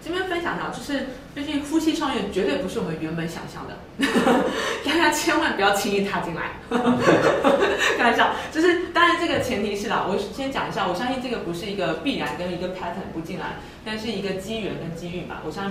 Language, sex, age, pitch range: Chinese, female, 20-39, 180-260 Hz